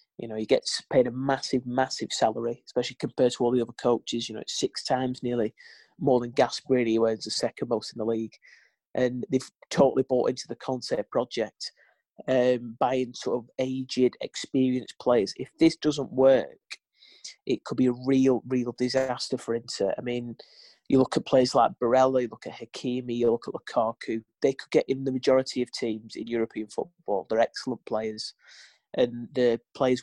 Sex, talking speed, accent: male, 190 wpm, British